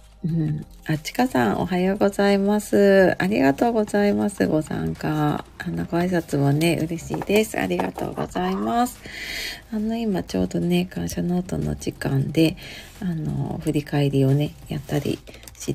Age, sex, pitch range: 40-59, female, 140-195 Hz